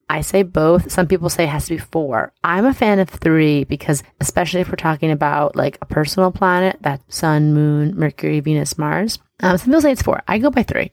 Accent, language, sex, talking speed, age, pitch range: American, English, female, 230 wpm, 30-49, 150-180 Hz